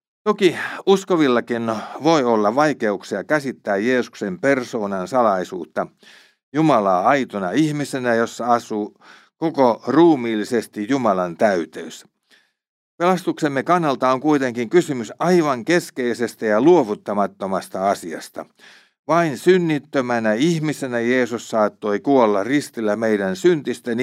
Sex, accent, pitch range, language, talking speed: male, native, 110-155 Hz, Finnish, 90 wpm